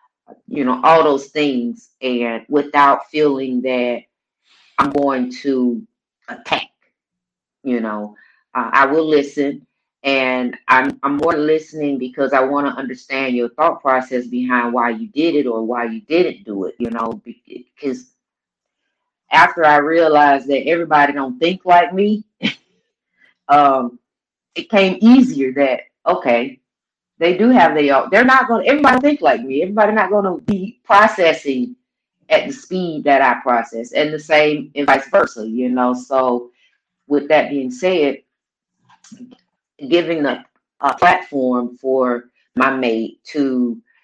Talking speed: 145 wpm